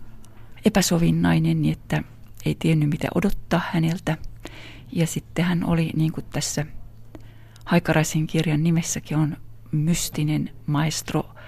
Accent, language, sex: native, Finnish, female